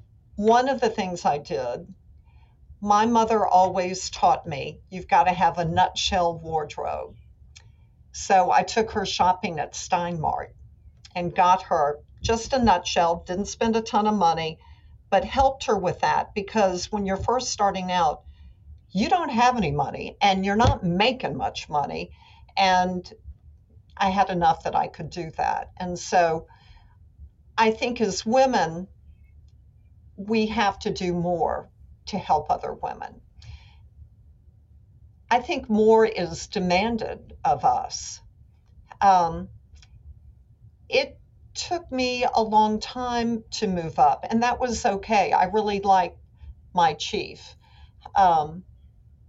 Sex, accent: female, American